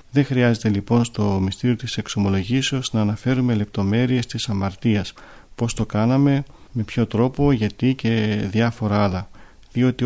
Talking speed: 135 wpm